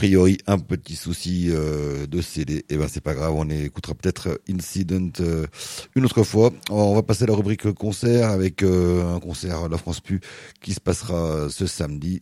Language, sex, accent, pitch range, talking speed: French, male, French, 80-95 Hz, 205 wpm